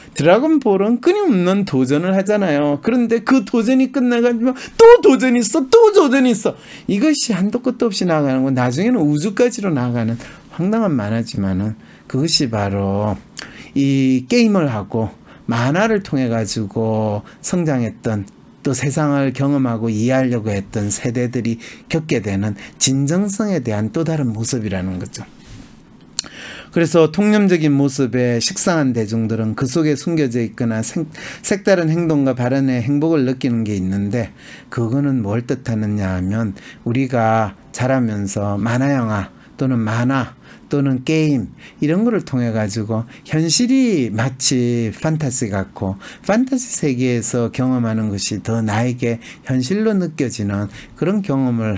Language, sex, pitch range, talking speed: English, male, 115-175 Hz, 110 wpm